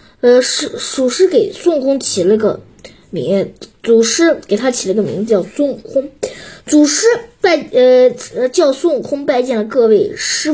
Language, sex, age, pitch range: Chinese, female, 20-39, 230-345 Hz